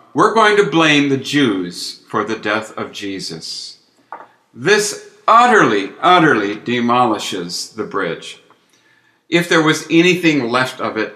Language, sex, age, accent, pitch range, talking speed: English, male, 60-79, American, 115-155 Hz, 130 wpm